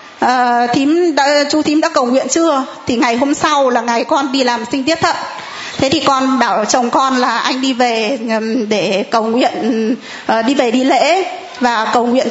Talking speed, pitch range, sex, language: 205 wpm, 245-300 Hz, female, Vietnamese